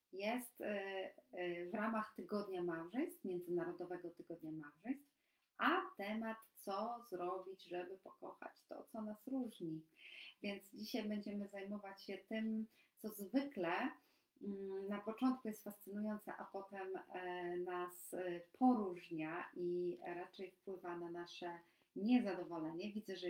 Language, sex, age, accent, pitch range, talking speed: Polish, female, 40-59, native, 175-215 Hz, 110 wpm